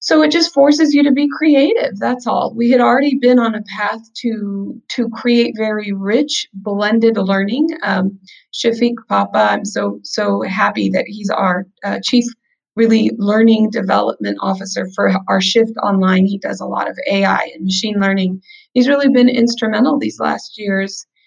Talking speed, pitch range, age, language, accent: 170 wpm, 195-250 Hz, 30-49, English, American